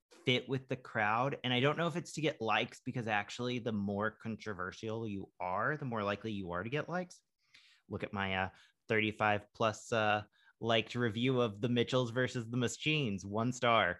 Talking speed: 195 wpm